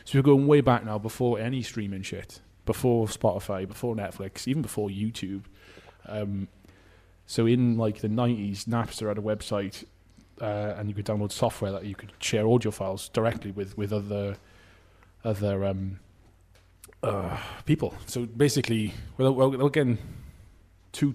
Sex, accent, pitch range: male, British, 95-115 Hz